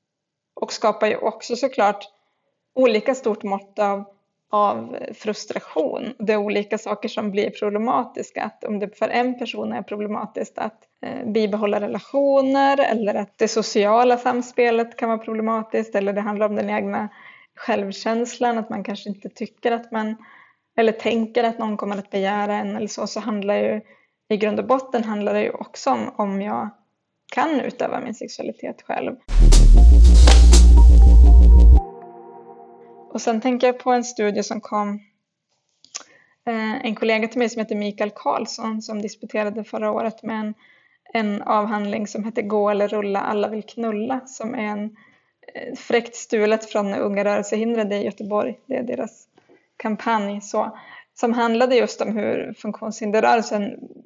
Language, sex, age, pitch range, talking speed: Swedish, female, 20-39, 205-230 Hz, 150 wpm